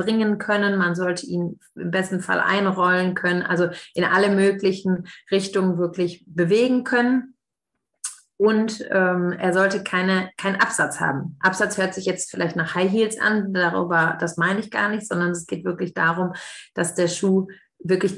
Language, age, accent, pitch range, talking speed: German, 30-49, German, 180-205 Hz, 165 wpm